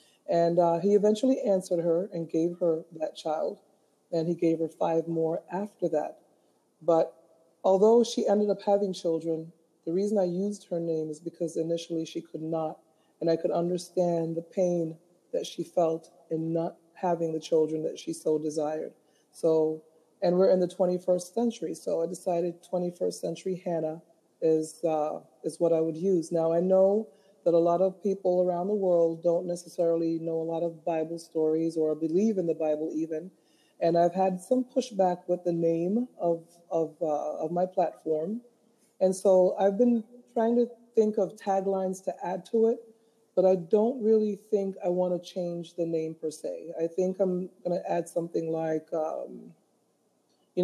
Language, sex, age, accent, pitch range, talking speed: English, female, 40-59, American, 165-190 Hz, 180 wpm